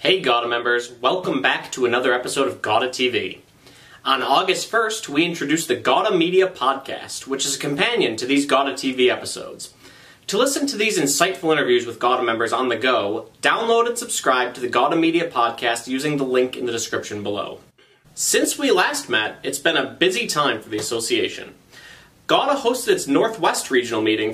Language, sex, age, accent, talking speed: English, male, 30-49, American, 180 wpm